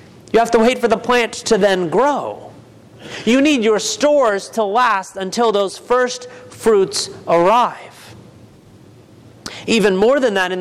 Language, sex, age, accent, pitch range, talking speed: English, male, 30-49, American, 185-245 Hz, 145 wpm